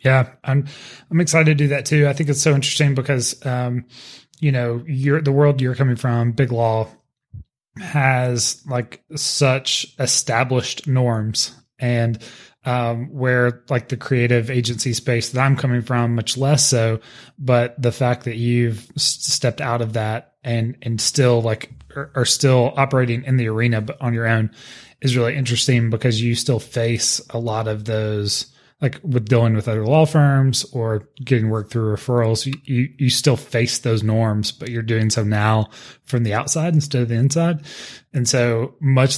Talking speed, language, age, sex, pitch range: 175 wpm, English, 20-39, male, 115-140 Hz